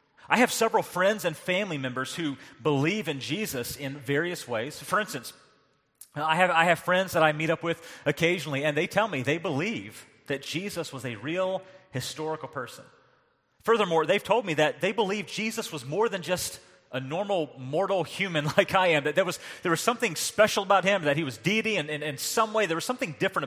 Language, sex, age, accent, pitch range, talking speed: English, male, 30-49, American, 145-185 Hz, 200 wpm